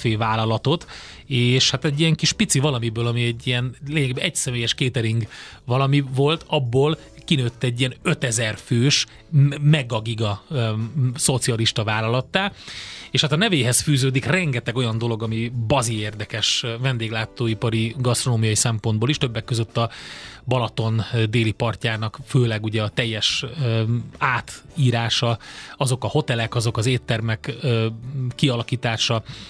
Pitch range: 110-135 Hz